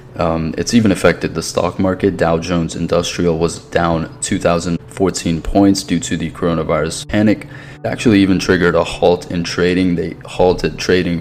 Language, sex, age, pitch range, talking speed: English, male, 20-39, 85-90 Hz, 160 wpm